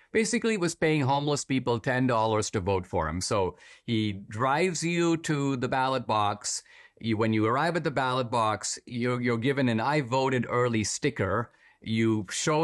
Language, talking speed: English, 165 wpm